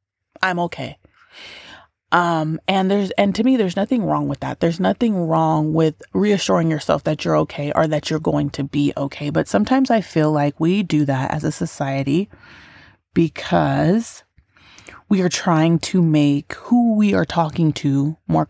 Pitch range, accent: 140-165 Hz, American